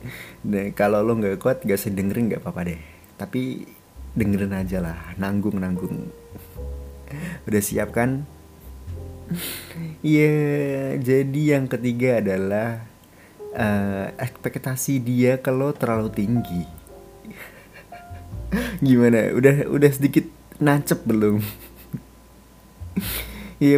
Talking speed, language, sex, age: 100 wpm, Indonesian, male, 30-49